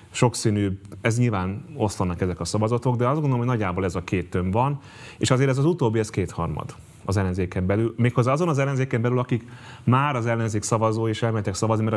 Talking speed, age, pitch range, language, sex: 205 wpm, 30-49, 95-115 Hz, Hungarian, male